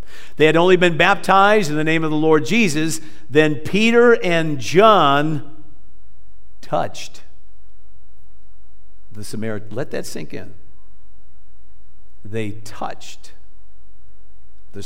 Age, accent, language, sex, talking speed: 50-69, American, English, male, 105 wpm